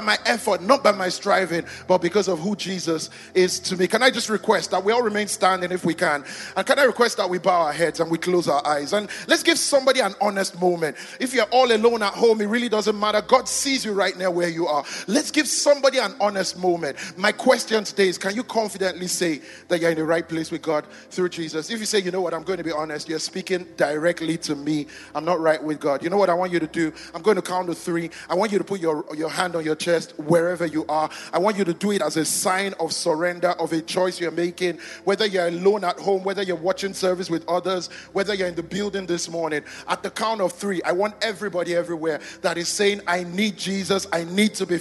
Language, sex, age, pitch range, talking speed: English, male, 30-49, 170-205 Hz, 255 wpm